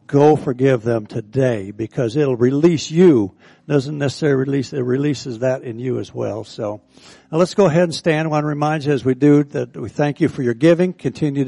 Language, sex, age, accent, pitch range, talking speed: English, male, 60-79, American, 125-155 Hz, 215 wpm